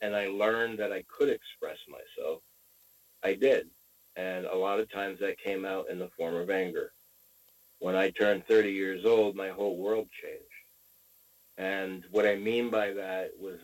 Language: English